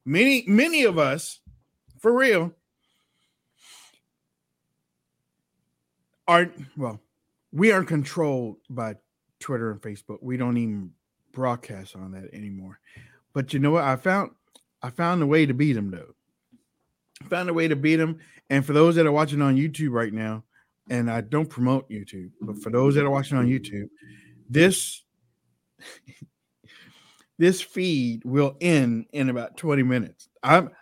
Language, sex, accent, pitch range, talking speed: English, male, American, 115-155 Hz, 150 wpm